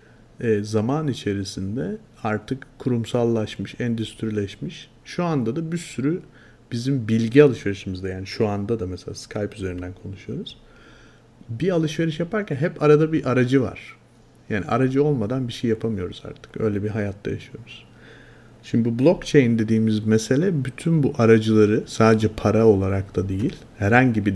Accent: native